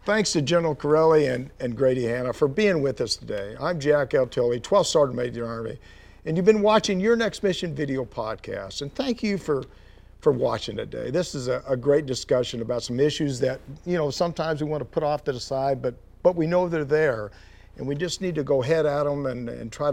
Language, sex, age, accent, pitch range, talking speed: English, male, 50-69, American, 120-165 Hz, 225 wpm